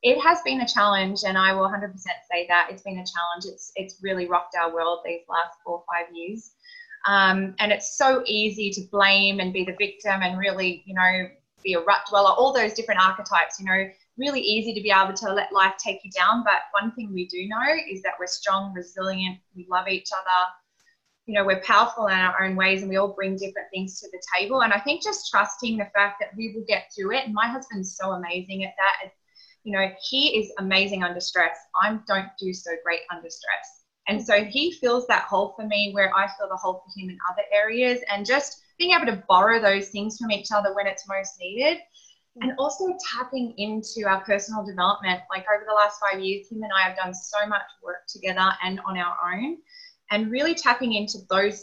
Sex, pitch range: female, 185-220 Hz